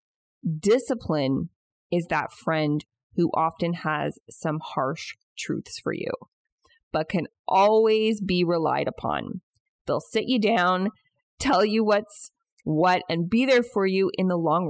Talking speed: 140 wpm